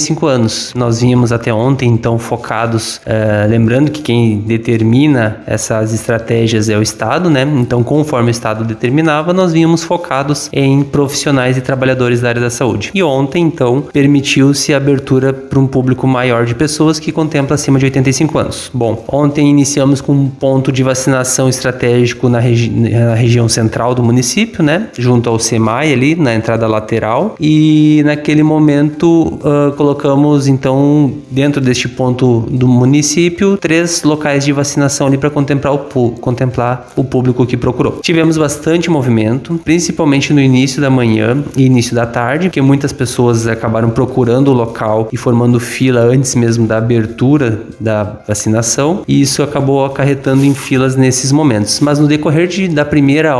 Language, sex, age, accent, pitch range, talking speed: Portuguese, male, 20-39, Brazilian, 120-145 Hz, 155 wpm